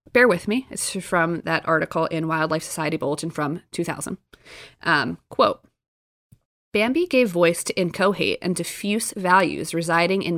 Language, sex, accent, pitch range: English, female, American, 170-215 Hz